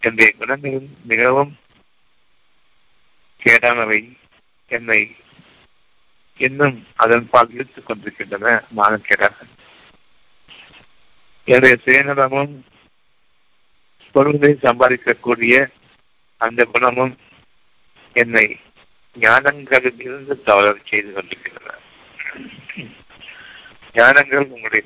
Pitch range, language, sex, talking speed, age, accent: 110-135 Hz, Tamil, male, 55 wpm, 50-69, native